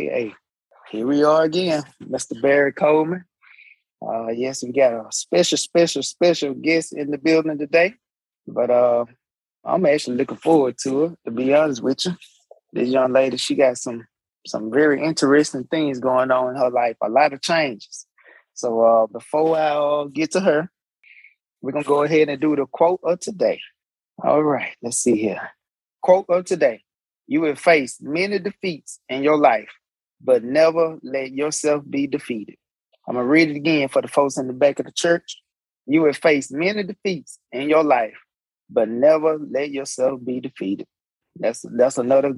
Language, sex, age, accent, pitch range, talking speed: English, male, 20-39, American, 130-160 Hz, 180 wpm